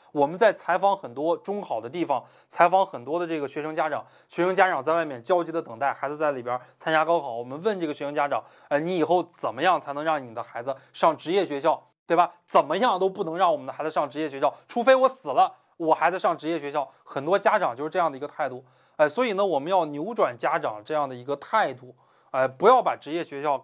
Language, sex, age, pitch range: Chinese, male, 20-39, 140-180 Hz